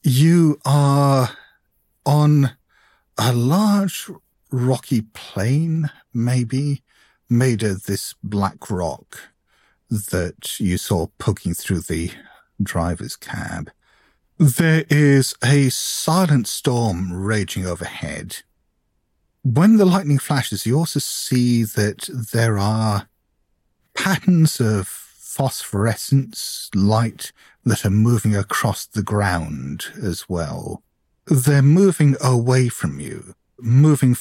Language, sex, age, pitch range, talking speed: English, male, 50-69, 100-140 Hz, 100 wpm